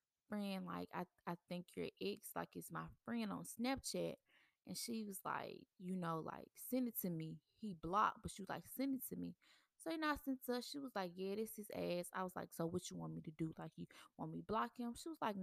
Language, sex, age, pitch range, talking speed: English, female, 20-39, 165-220 Hz, 265 wpm